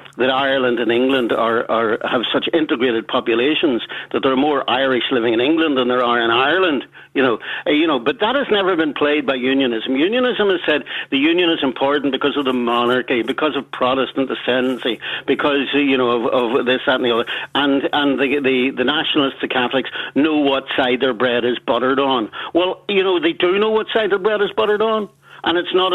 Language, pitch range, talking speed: English, 130-170 Hz, 215 wpm